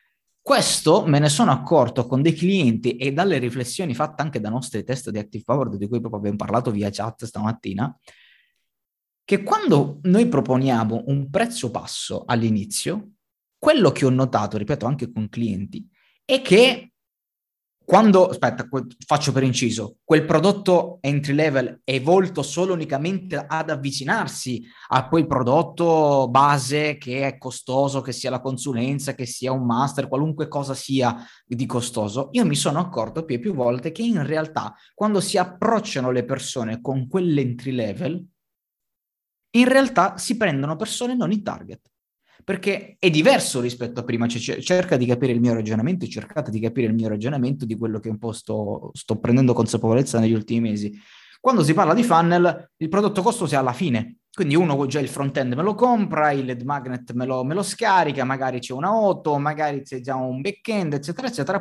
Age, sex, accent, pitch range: 20-39, male, native, 120-170 Hz